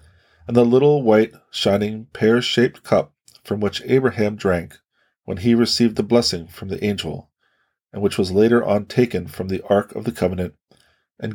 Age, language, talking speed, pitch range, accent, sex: 20-39, English, 170 wpm, 90-120 Hz, American, male